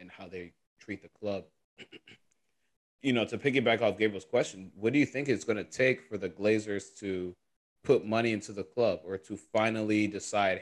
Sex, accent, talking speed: male, American, 190 wpm